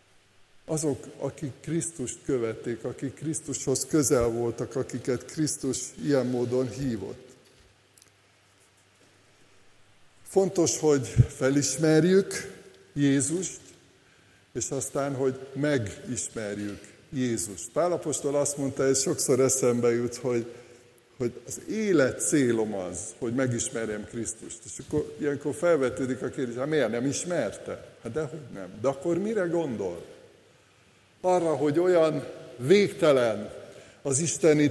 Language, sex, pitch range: Hungarian, male, 125-155 Hz